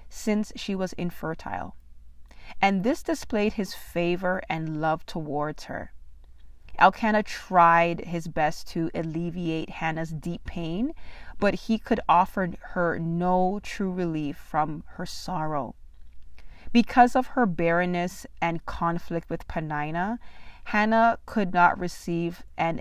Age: 30-49